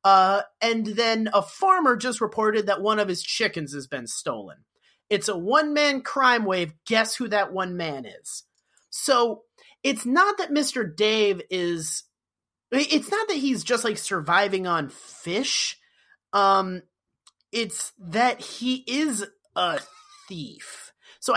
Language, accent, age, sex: English, American, 30-49, male